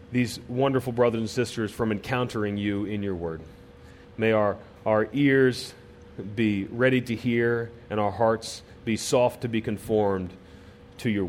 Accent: American